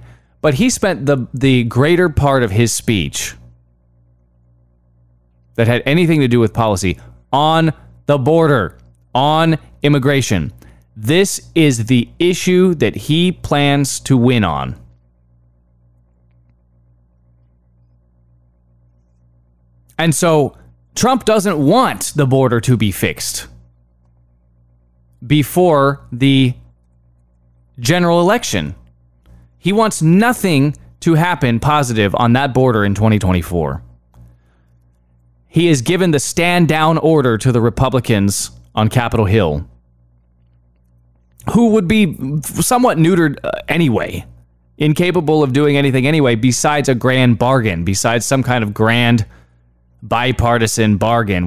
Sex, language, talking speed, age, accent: male, English, 105 wpm, 20-39, American